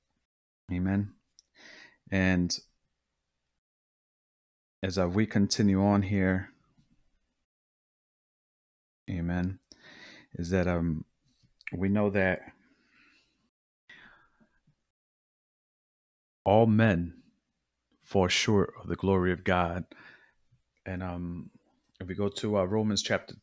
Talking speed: 80 wpm